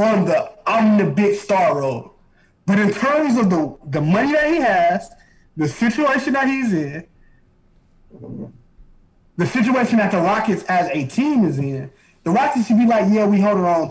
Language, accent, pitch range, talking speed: English, American, 160-235 Hz, 175 wpm